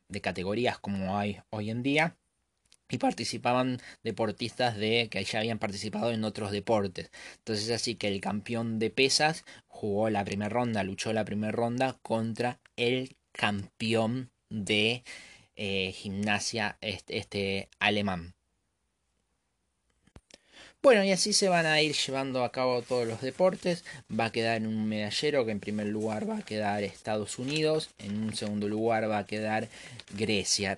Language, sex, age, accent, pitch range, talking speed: Spanish, male, 20-39, Argentinian, 105-125 Hz, 150 wpm